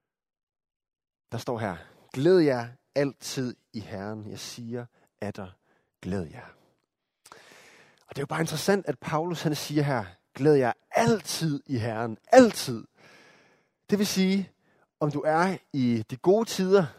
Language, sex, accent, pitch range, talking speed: Danish, male, native, 120-170 Hz, 140 wpm